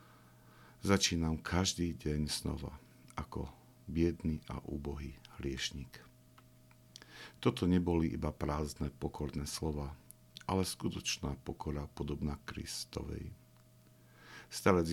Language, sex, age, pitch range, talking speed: Slovak, male, 50-69, 70-85 Hz, 85 wpm